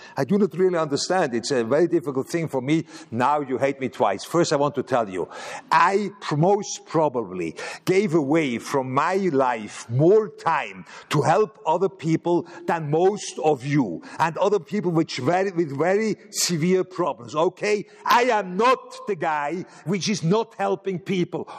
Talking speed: 170 wpm